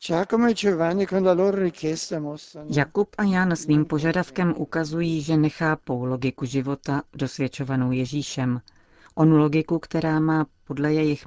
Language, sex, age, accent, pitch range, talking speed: Czech, female, 40-59, native, 135-155 Hz, 95 wpm